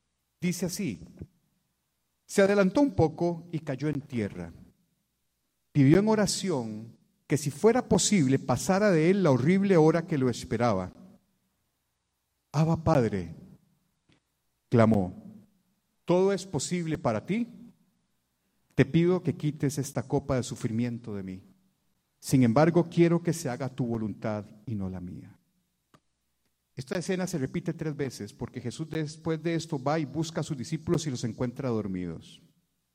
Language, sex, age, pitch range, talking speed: Spanish, male, 50-69, 120-175 Hz, 140 wpm